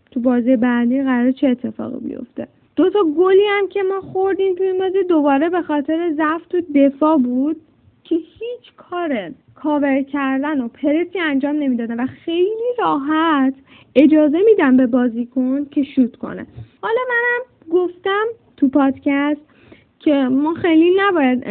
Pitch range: 245-295 Hz